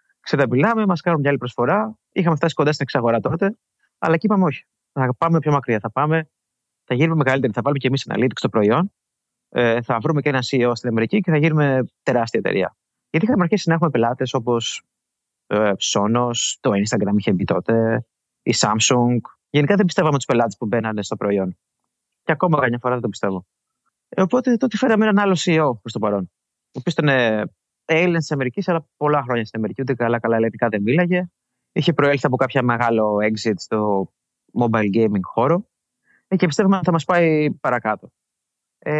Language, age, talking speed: Greek, 20-39, 190 wpm